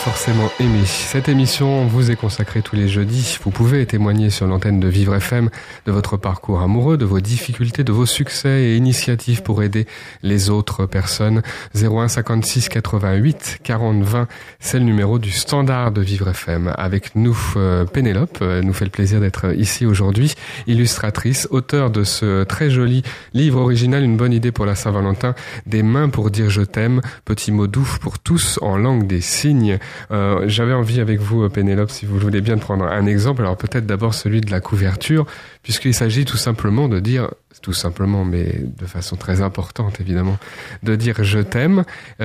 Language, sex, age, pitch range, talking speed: French, male, 30-49, 100-120 Hz, 185 wpm